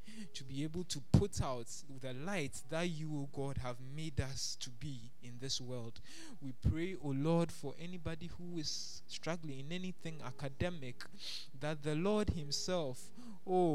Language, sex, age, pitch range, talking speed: English, male, 20-39, 125-160 Hz, 170 wpm